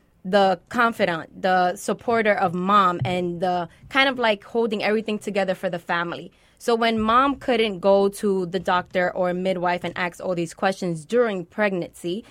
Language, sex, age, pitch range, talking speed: English, female, 20-39, 180-215 Hz, 165 wpm